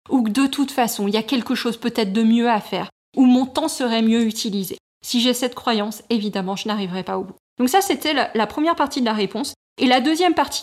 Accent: French